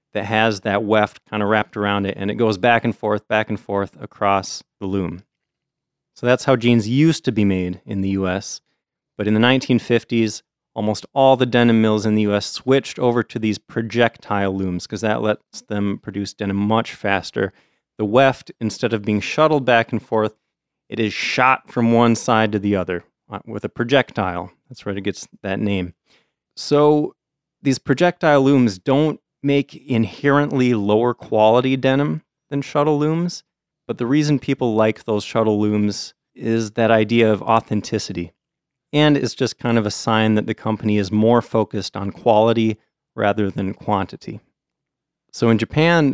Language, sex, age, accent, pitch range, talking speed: English, male, 30-49, American, 105-130 Hz, 170 wpm